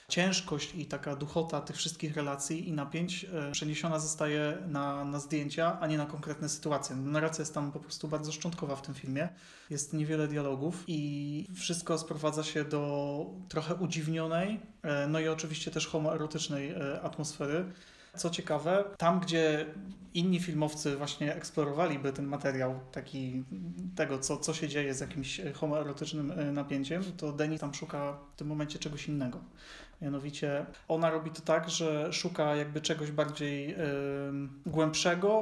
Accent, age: native, 30-49